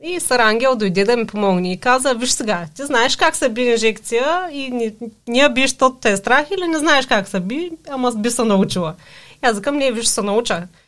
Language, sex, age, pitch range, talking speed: Bulgarian, female, 30-49, 195-260 Hz, 215 wpm